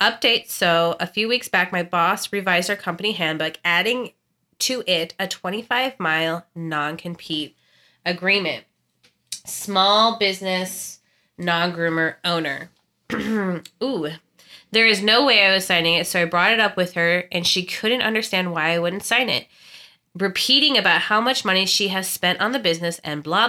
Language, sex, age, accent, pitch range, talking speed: English, female, 20-39, American, 170-215 Hz, 155 wpm